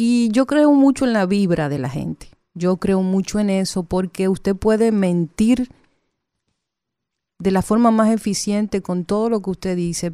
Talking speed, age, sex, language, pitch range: 180 wpm, 40-59, female, Spanish, 180-215 Hz